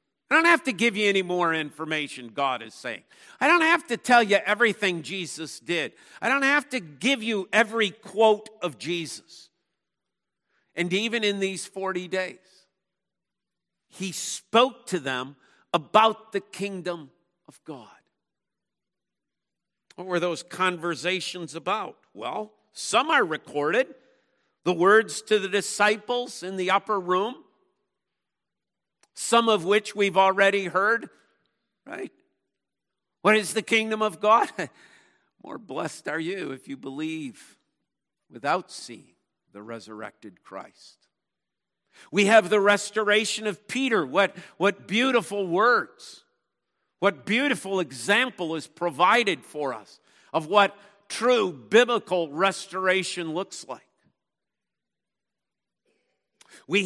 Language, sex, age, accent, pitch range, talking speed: English, male, 50-69, American, 180-220 Hz, 120 wpm